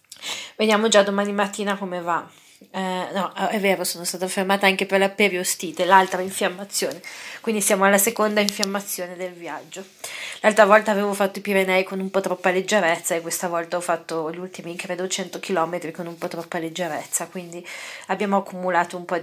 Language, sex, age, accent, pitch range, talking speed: Italian, female, 30-49, native, 180-220 Hz, 175 wpm